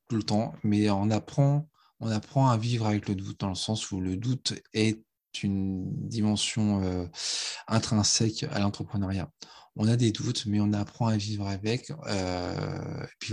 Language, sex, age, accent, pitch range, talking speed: French, male, 20-39, French, 100-115 Hz, 170 wpm